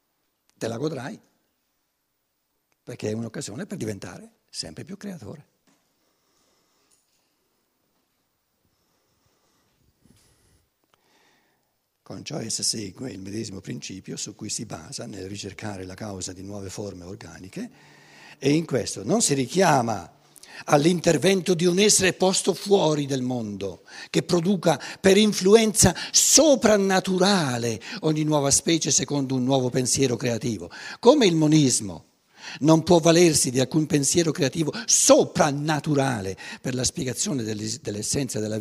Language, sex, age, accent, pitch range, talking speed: Italian, male, 60-79, native, 110-170 Hz, 115 wpm